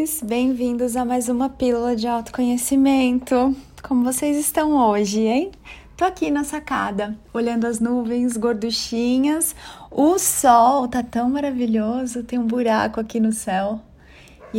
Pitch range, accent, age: 220-270 Hz, Brazilian, 20-39